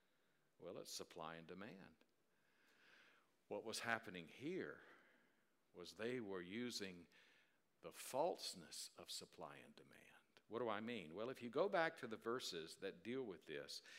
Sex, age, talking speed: male, 60-79, 150 wpm